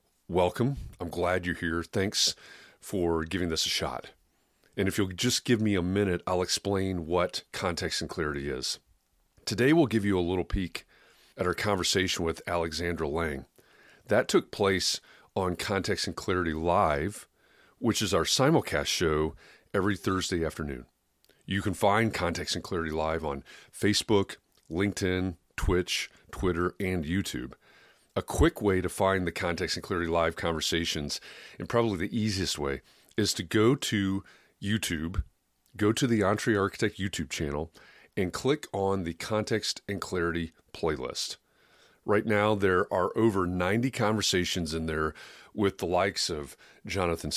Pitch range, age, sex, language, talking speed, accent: 85-100 Hz, 40-59, male, English, 150 wpm, American